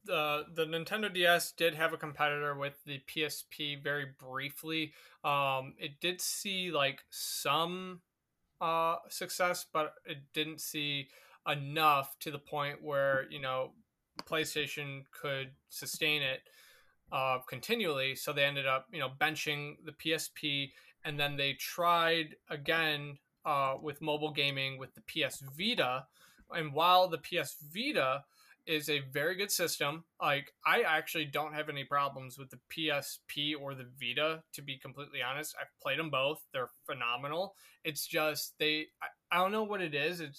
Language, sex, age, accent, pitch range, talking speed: English, male, 20-39, American, 140-165 Hz, 165 wpm